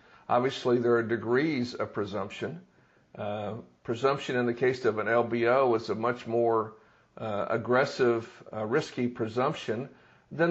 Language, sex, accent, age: English, male, American, 50-69